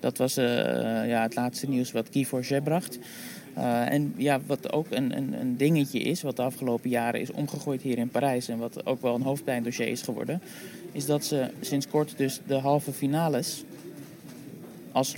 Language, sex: Dutch, male